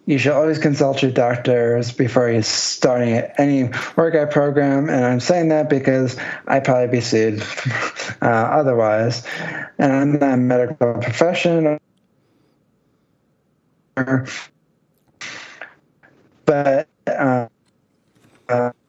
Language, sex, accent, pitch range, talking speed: English, male, American, 125-155 Hz, 90 wpm